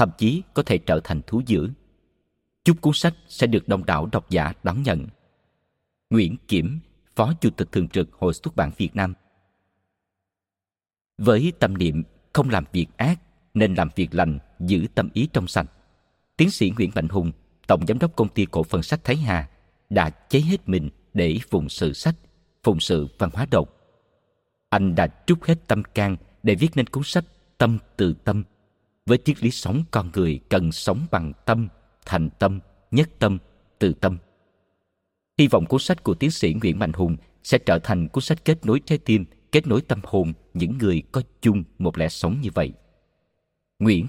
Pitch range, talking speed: 90-125 Hz, 190 wpm